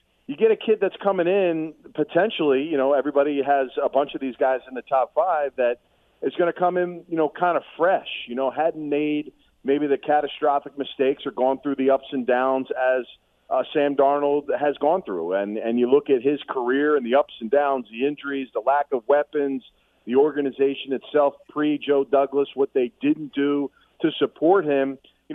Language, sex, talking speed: English, male, 200 wpm